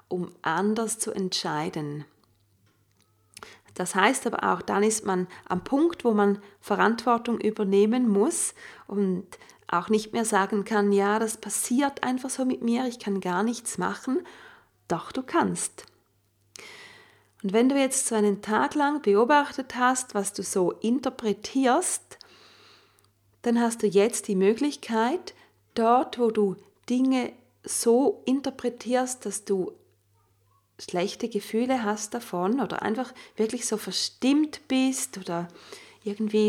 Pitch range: 185-250 Hz